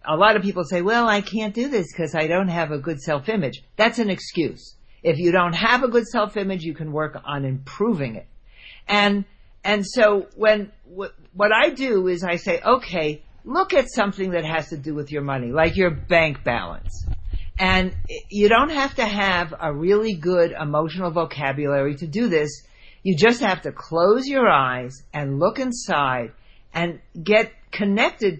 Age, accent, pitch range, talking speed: 50-69, American, 145-200 Hz, 180 wpm